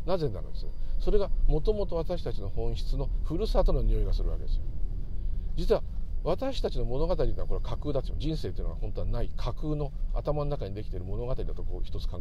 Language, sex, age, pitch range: Japanese, male, 50-69, 90-145 Hz